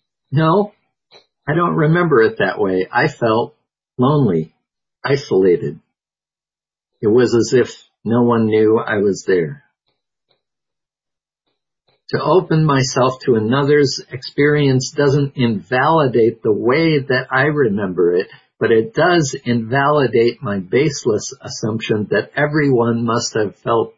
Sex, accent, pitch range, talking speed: male, American, 110-150 Hz, 120 wpm